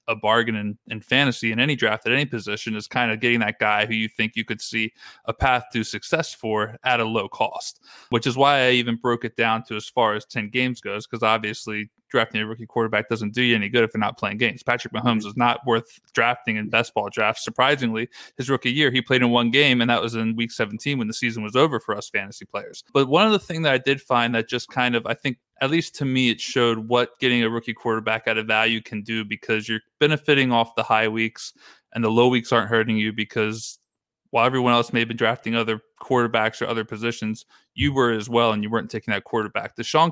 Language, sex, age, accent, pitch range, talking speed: English, male, 20-39, American, 110-125 Hz, 250 wpm